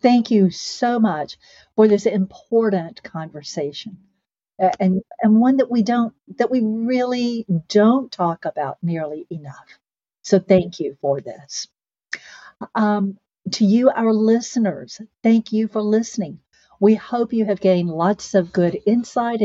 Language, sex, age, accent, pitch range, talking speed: English, female, 50-69, American, 185-220 Hz, 140 wpm